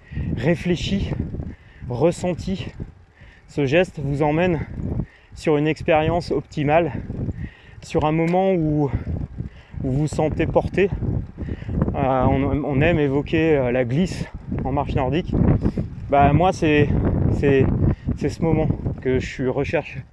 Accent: French